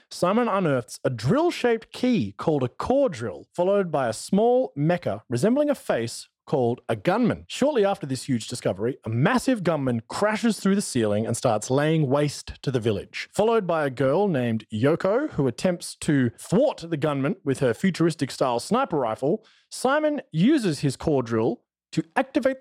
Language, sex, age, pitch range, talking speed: English, male, 30-49, 125-200 Hz, 165 wpm